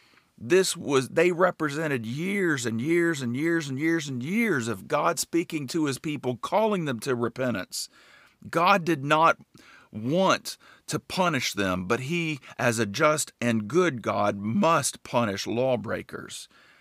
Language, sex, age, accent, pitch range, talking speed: English, male, 50-69, American, 115-170 Hz, 145 wpm